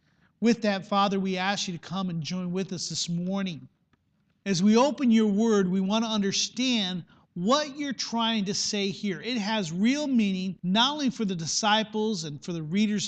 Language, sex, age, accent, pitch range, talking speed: English, male, 40-59, American, 195-240 Hz, 195 wpm